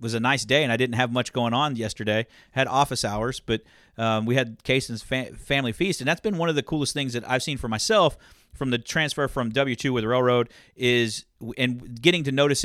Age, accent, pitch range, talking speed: 40-59, American, 120-155 Hz, 235 wpm